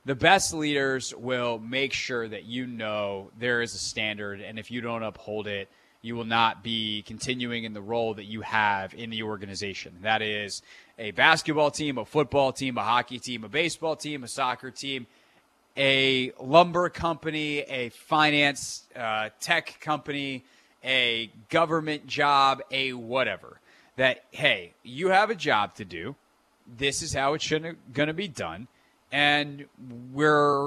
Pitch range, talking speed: 115-150 Hz, 160 wpm